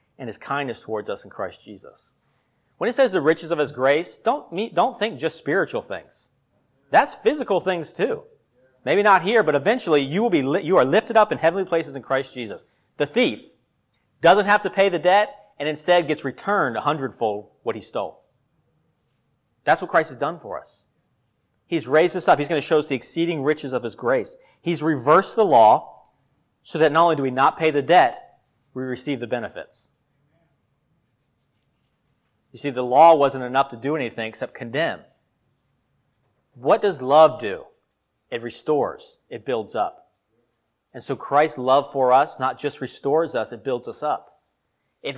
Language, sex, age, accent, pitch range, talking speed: English, male, 40-59, American, 130-170 Hz, 185 wpm